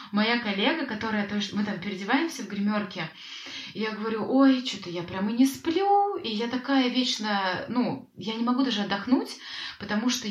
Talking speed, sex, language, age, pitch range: 180 wpm, female, Russian, 20-39, 195-265 Hz